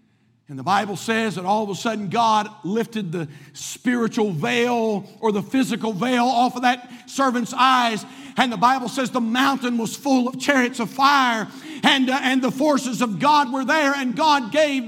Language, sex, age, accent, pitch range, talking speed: English, male, 50-69, American, 175-270 Hz, 190 wpm